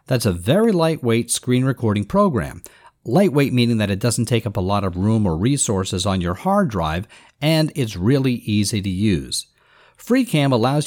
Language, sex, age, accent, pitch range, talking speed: English, male, 50-69, American, 110-155 Hz, 175 wpm